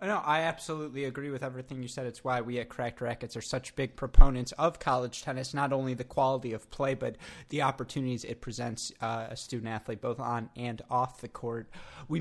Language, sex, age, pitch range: English, male, 20-39, 115-140 Hz